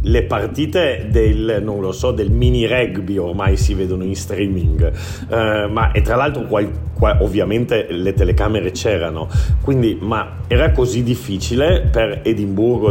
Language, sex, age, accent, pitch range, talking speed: Italian, male, 40-59, native, 90-110 Hz, 150 wpm